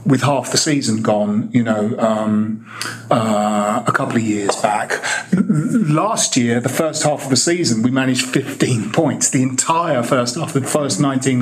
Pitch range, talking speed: 120-150 Hz, 185 wpm